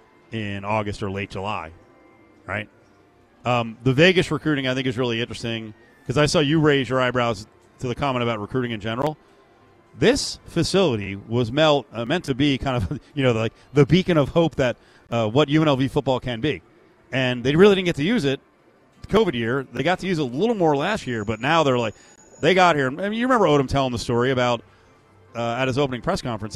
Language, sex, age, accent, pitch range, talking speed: English, male, 40-59, American, 115-145 Hz, 210 wpm